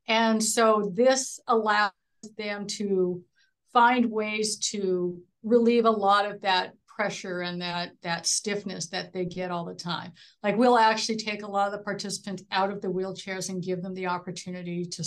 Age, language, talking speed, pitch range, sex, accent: 60-79, English, 175 wpm, 185-225 Hz, female, American